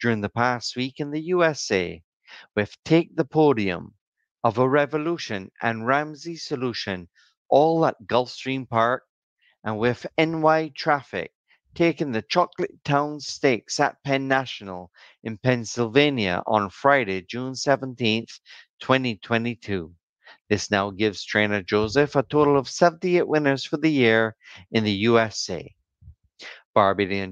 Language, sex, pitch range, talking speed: English, male, 105-150 Hz, 125 wpm